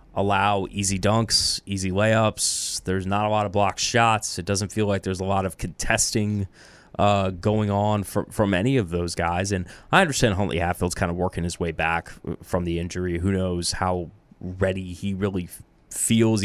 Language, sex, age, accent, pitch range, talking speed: English, male, 20-39, American, 90-110 Hz, 180 wpm